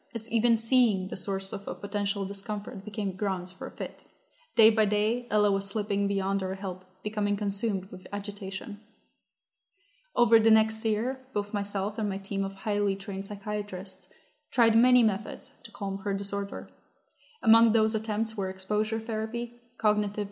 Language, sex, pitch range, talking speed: English, female, 200-220 Hz, 160 wpm